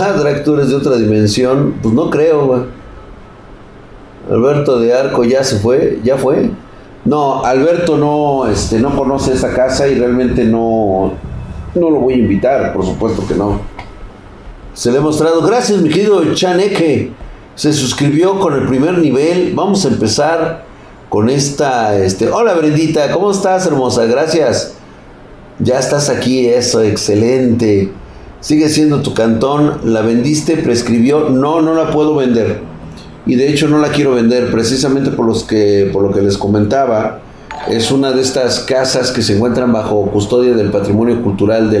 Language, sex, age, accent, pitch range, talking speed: Spanish, male, 50-69, Mexican, 105-140 Hz, 155 wpm